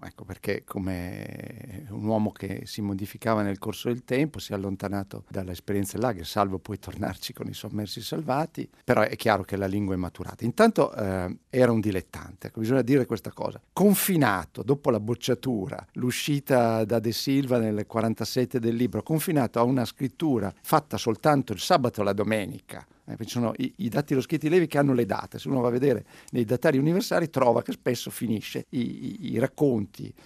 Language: Italian